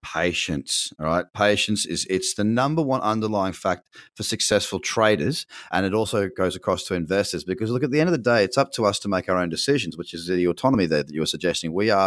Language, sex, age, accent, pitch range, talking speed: English, male, 30-49, Australian, 90-125 Hz, 245 wpm